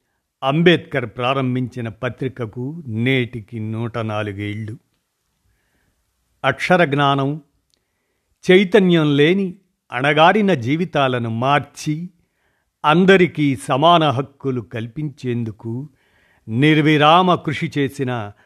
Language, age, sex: Telugu, 50-69, male